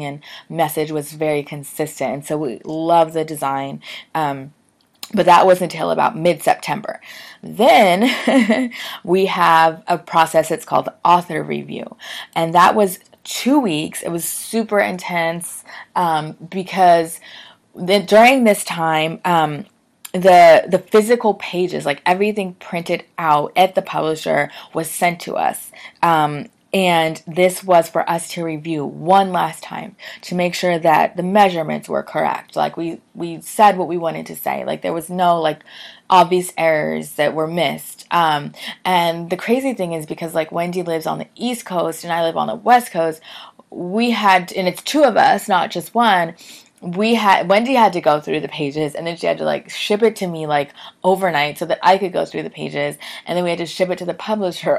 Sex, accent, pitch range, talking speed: female, American, 155-185 Hz, 180 wpm